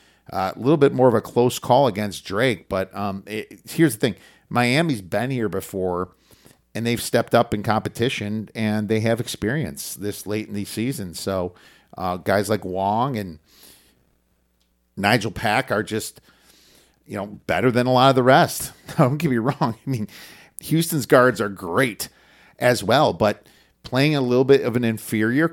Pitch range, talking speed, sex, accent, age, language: 100-125 Hz, 175 wpm, male, American, 40-59, English